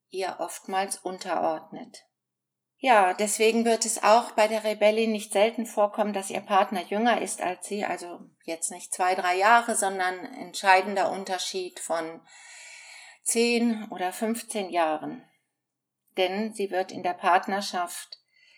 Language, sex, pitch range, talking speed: German, female, 185-230 Hz, 130 wpm